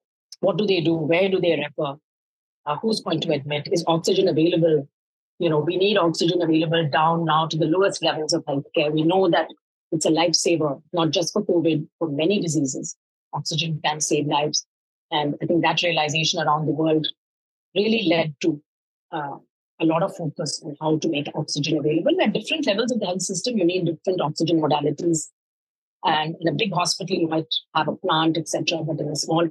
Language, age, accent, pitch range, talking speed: English, 30-49, Indian, 155-175 Hz, 195 wpm